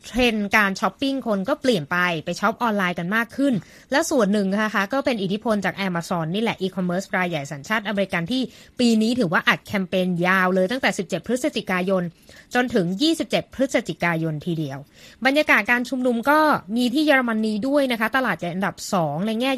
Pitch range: 185-245 Hz